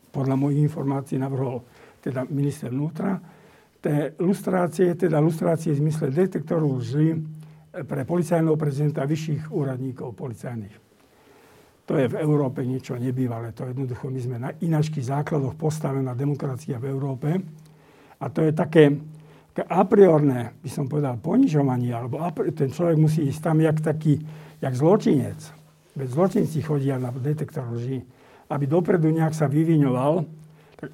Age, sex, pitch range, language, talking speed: 60-79, male, 140-170 Hz, Slovak, 135 wpm